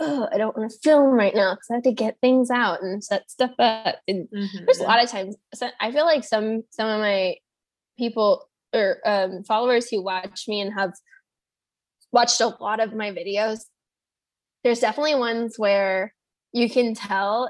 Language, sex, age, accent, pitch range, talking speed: English, female, 10-29, American, 200-240 Hz, 185 wpm